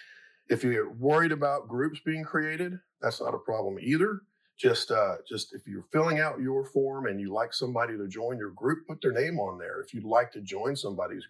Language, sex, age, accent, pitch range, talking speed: English, male, 40-59, American, 110-180 Hz, 210 wpm